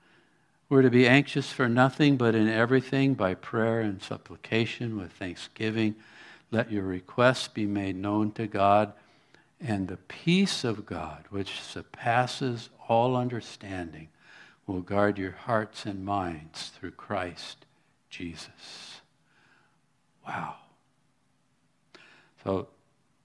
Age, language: 60-79, English